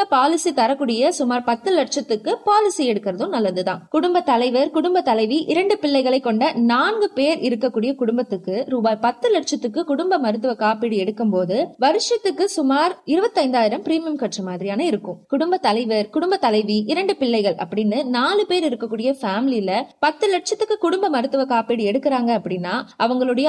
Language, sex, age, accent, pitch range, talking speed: Tamil, female, 20-39, native, 225-335 Hz, 30 wpm